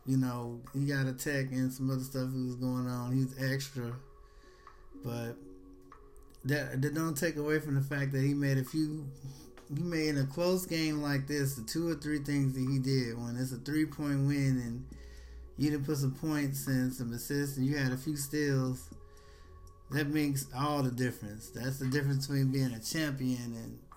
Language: English